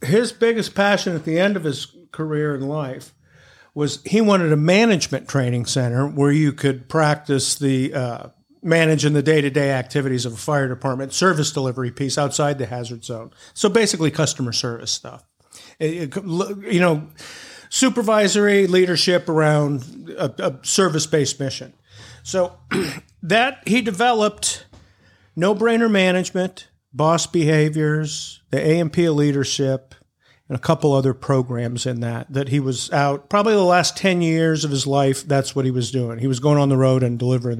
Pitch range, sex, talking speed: 130-180 Hz, male, 155 wpm